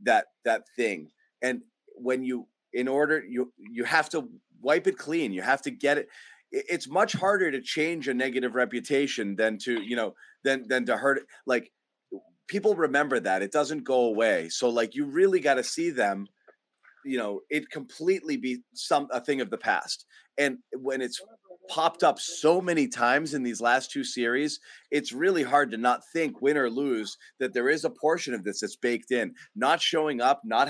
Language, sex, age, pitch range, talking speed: English, male, 30-49, 125-155 Hz, 195 wpm